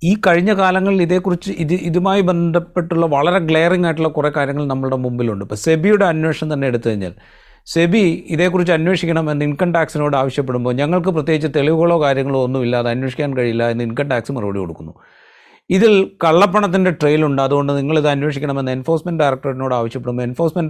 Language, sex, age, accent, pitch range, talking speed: Malayalam, male, 30-49, native, 135-170 Hz, 140 wpm